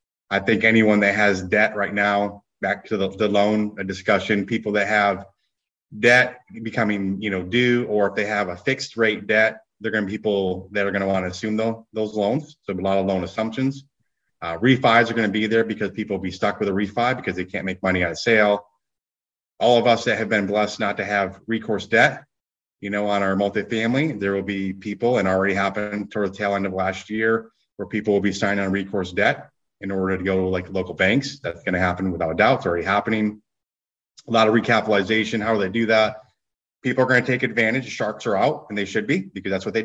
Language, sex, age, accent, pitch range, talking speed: English, male, 30-49, American, 100-115 Hz, 230 wpm